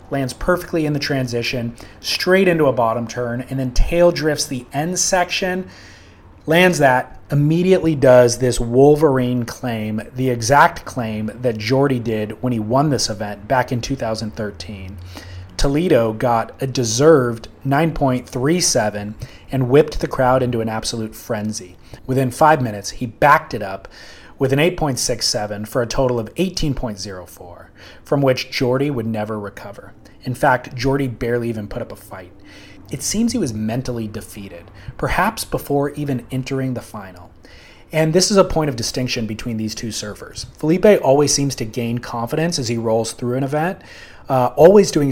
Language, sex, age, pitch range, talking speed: English, male, 30-49, 110-145 Hz, 160 wpm